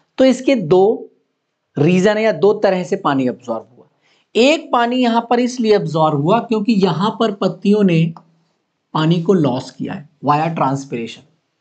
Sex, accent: male, native